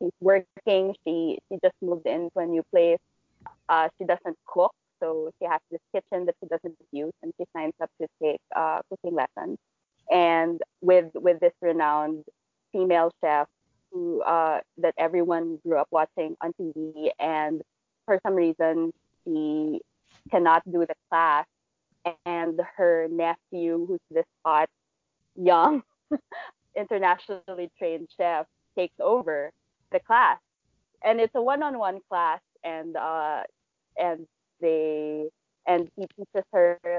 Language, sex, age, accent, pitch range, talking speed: English, female, 20-39, Filipino, 165-225 Hz, 135 wpm